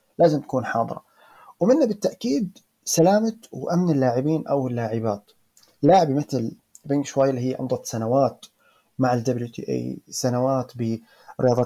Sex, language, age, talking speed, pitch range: male, Arabic, 30-49, 125 wpm, 120-165 Hz